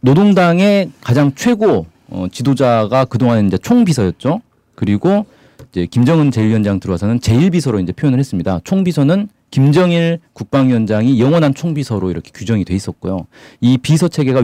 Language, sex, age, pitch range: Korean, male, 40-59, 105-150 Hz